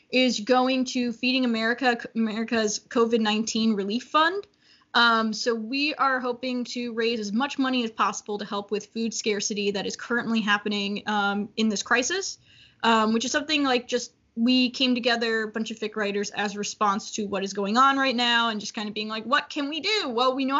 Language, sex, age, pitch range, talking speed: English, female, 10-29, 215-260 Hz, 205 wpm